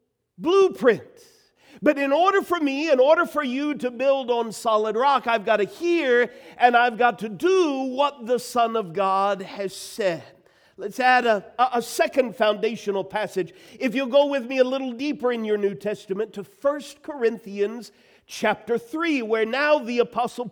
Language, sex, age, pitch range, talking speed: English, male, 50-69, 225-295 Hz, 175 wpm